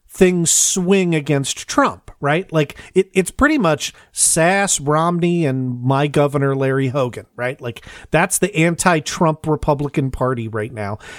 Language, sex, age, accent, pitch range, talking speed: English, male, 40-59, American, 135-190 Hz, 135 wpm